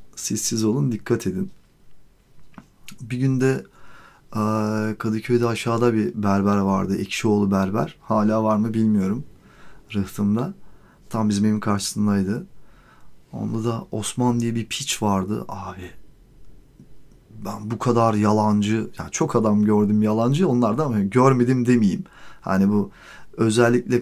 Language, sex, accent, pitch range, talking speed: Turkish, male, native, 105-140 Hz, 115 wpm